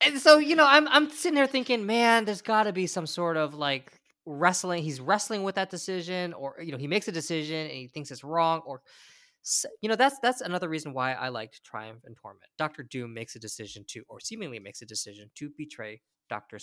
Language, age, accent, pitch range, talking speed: English, 20-39, American, 130-180 Hz, 225 wpm